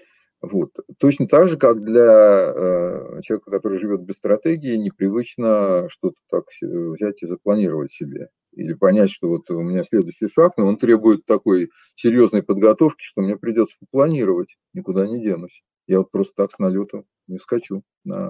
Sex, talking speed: male, 165 wpm